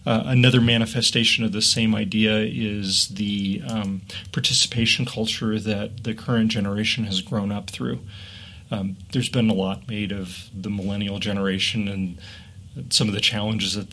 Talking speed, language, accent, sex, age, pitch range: 155 wpm, English, American, male, 30-49, 100-115 Hz